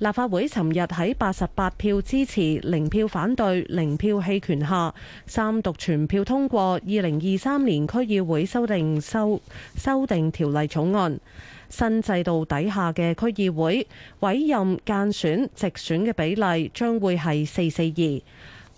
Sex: female